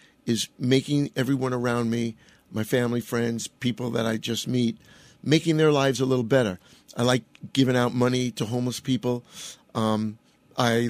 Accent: American